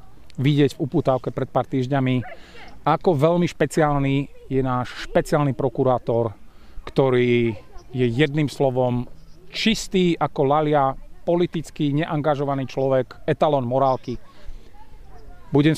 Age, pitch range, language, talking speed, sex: 30-49, 130-165 Hz, Slovak, 100 wpm, male